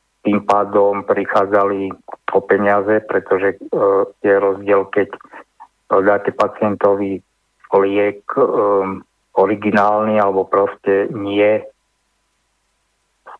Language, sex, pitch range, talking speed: Slovak, male, 100-110 Hz, 85 wpm